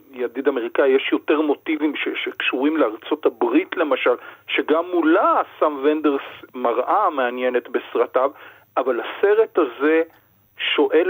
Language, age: Hebrew, 40-59